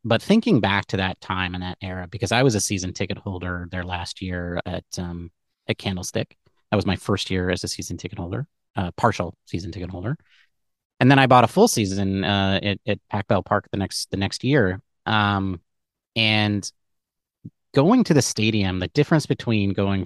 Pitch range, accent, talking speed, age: 95-125 Hz, American, 195 wpm, 30-49